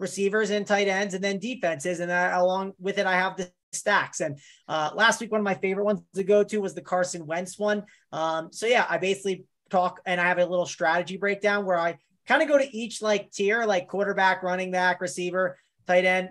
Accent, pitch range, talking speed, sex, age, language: American, 185-220 Hz, 230 wpm, male, 30-49, English